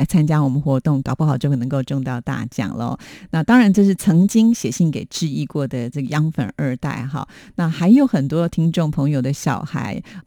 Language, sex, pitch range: Chinese, female, 150-190 Hz